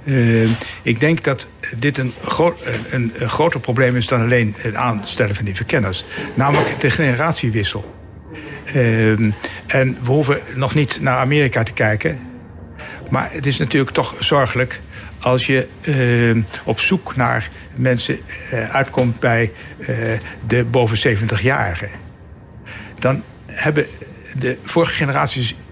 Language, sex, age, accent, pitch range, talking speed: Dutch, male, 60-79, Dutch, 105-130 Hz, 130 wpm